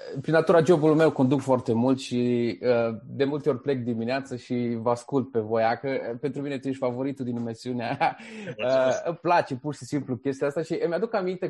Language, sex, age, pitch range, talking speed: Romanian, male, 20-39, 125-165 Hz, 210 wpm